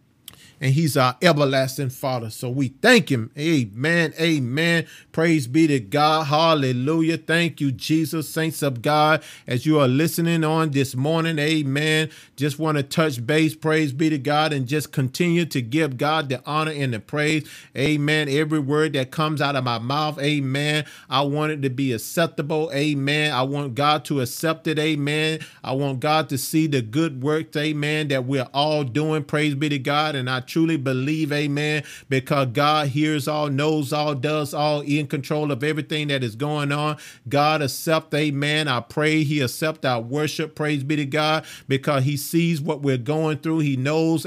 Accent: American